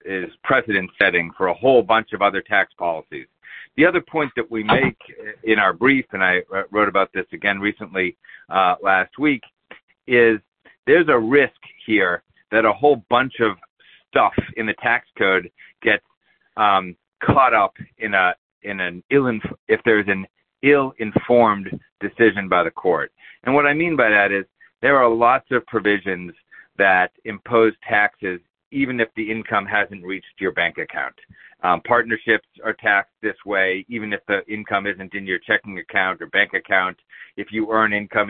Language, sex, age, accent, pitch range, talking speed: English, male, 50-69, American, 95-115 Hz, 170 wpm